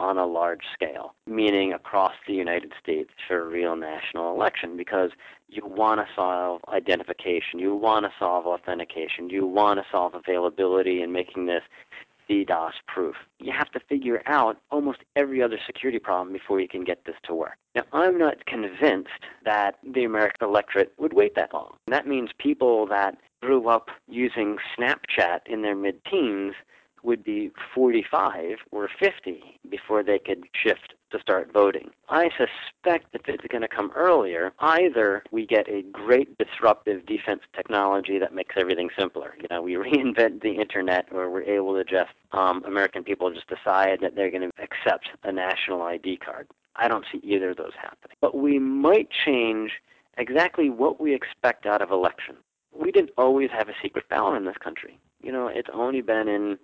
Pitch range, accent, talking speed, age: 95-125 Hz, American, 175 wpm, 40-59